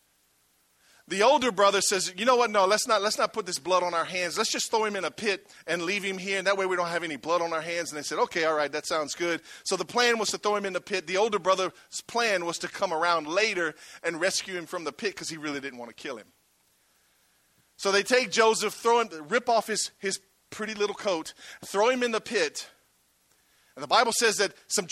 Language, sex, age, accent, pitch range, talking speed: English, male, 40-59, American, 165-215 Hz, 255 wpm